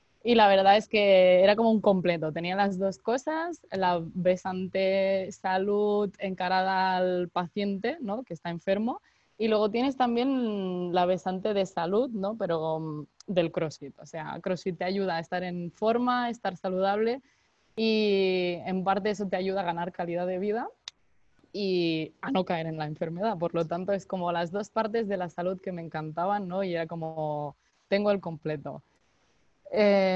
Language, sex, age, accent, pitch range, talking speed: English, female, 20-39, Spanish, 175-215 Hz, 175 wpm